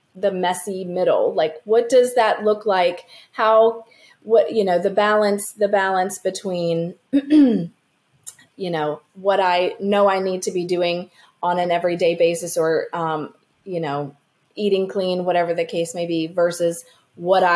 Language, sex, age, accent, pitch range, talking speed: English, female, 30-49, American, 165-205 Hz, 155 wpm